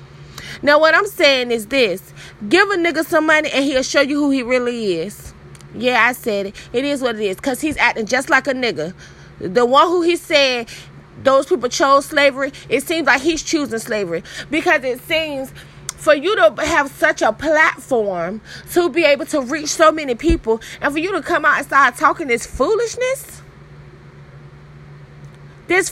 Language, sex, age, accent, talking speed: English, female, 30-49, American, 180 wpm